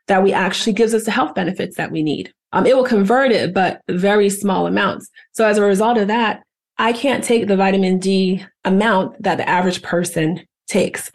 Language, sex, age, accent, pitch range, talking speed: English, female, 30-49, American, 180-215 Hz, 205 wpm